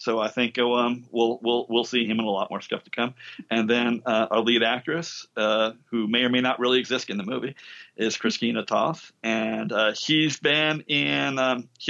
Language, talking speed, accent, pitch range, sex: English, 215 wpm, American, 110-130 Hz, male